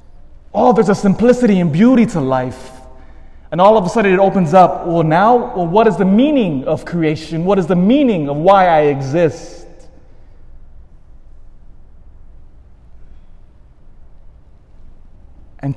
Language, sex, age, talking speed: English, male, 20-39, 125 wpm